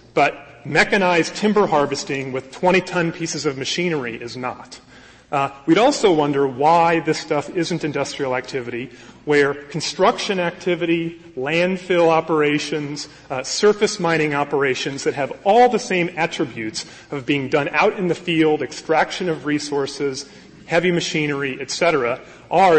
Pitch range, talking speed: 135-170 Hz, 135 wpm